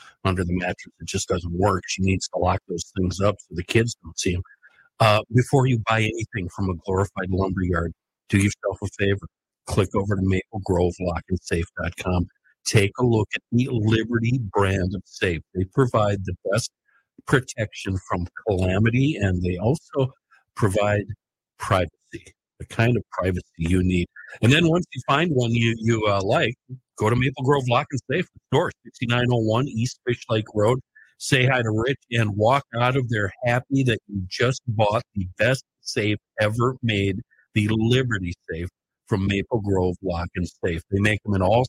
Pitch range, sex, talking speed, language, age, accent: 95-120 Hz, male, 175 wpm, English, 50-69, American